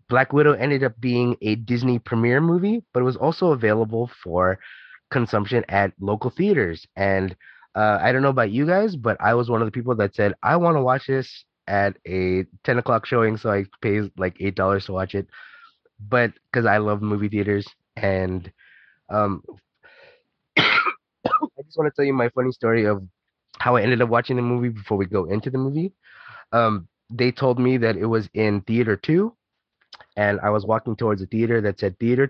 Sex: male